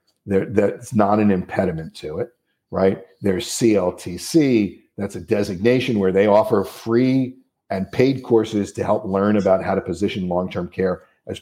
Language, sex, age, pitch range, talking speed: English, male, 50-69, 100-125 Hz, 150 wpm